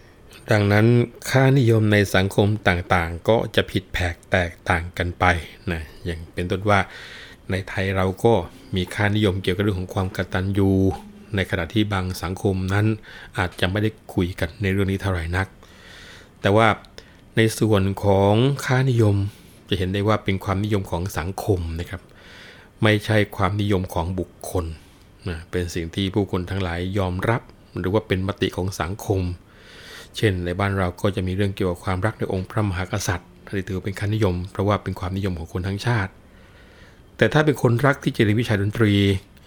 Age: 20-39